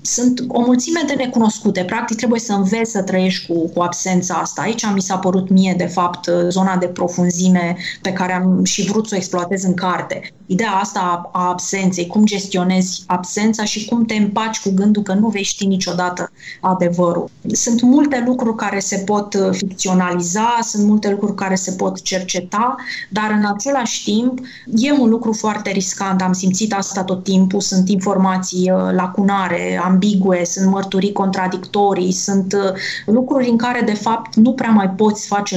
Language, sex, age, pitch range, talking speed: Romanian, female, 20-39, 185-210 Hz, 170 wpm